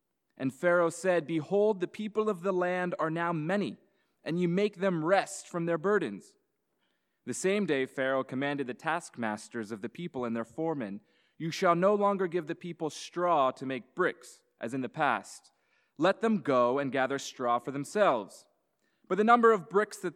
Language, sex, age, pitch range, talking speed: English, male, 20-39, 140-190 Hz, 185 wpm